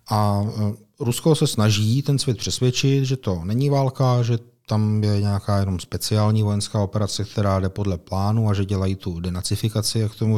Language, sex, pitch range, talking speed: Czech, male, 100-120 Hz, 175 wpm